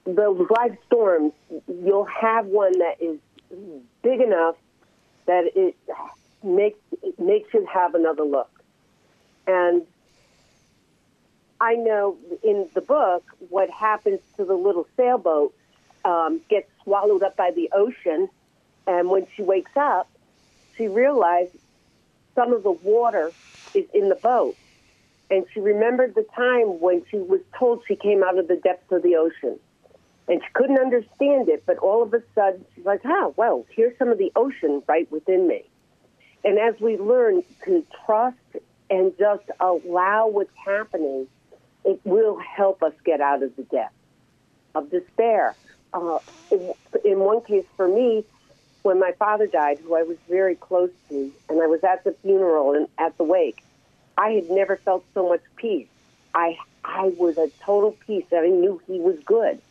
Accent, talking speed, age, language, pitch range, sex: American, 160 wpm, 50-69, English, 175-250 Hz, female